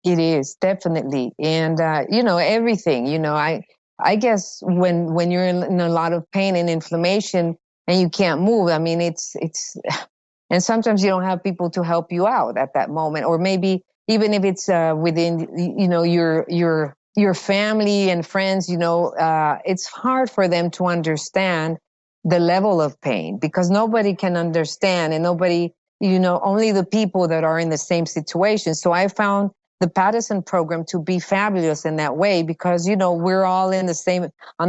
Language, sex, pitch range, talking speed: English, female, 165-190 Hz, 190 wpm